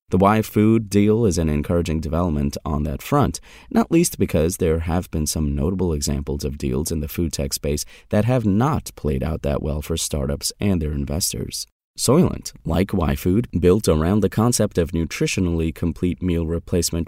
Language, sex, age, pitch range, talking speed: English, male, 30-49, 75-105 Hz, 185 wpm